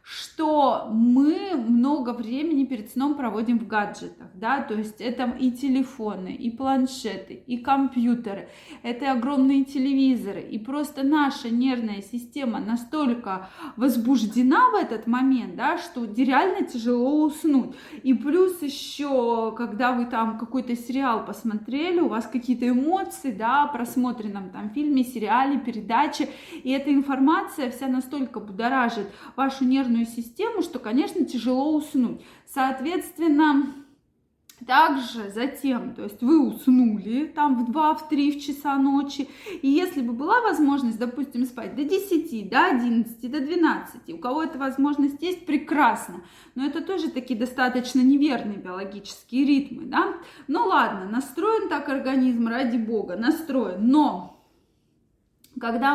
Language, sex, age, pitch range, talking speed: Russian, female, 20-39, 240-290 Hz, 130 wpm